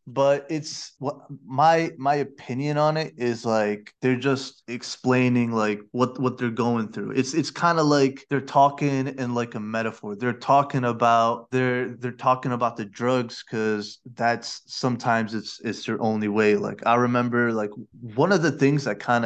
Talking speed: 175 wpm